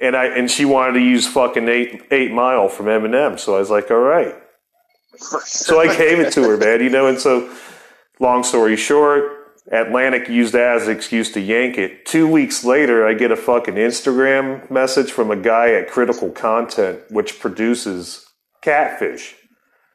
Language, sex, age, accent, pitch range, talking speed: English, male, 30-49, American, 110-155 Hz, 170 wpm